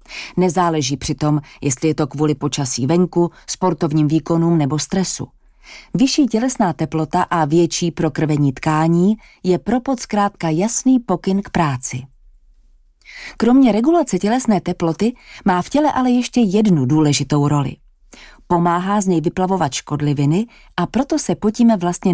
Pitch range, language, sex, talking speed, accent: 155-210 Hz, English, female, 135 wpm, Czech